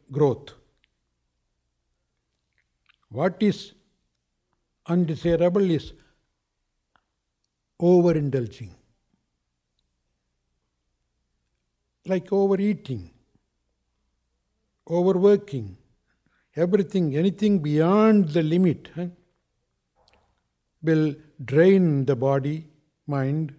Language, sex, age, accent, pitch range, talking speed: English, male, 60-79, Indian, 110-175 Hz, 50 wpm